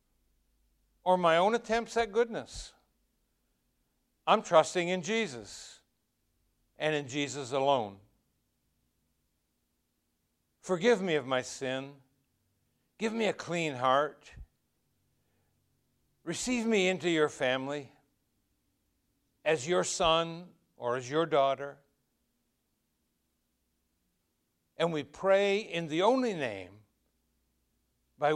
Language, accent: English, American